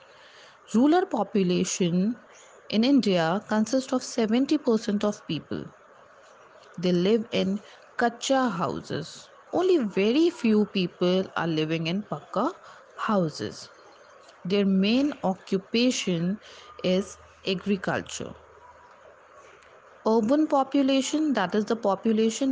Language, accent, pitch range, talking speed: English, Indian, 190-265 Hz, 90 wpm